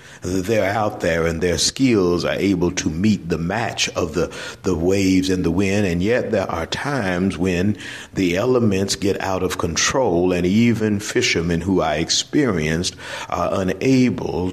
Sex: male